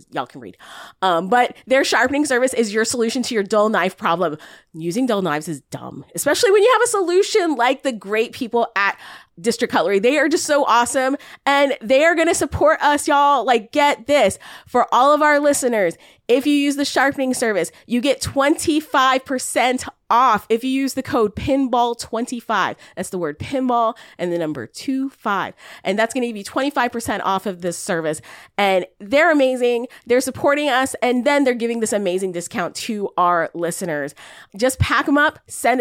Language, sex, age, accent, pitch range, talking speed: English, female, 20-39, American, 200-275 Hz, 190 wpm